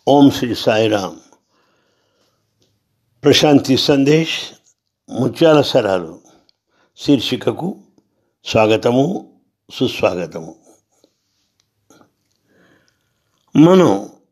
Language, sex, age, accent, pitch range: English, male, 60-79, Indian, 110-150 Hz